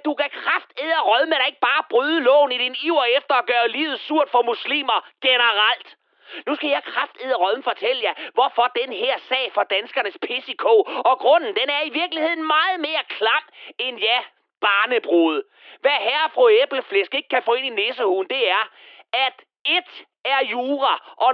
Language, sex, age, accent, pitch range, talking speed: Danish, male, 30-49, native, 250-360 Hz, 185 wpm